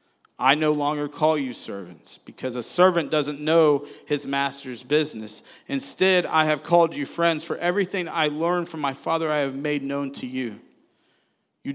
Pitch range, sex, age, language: 125-150 Hz, male, 40-59, English